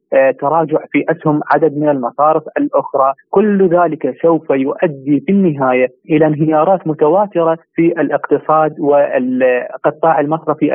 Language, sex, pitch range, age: Arabic, male, 135-155 Hz, 30-49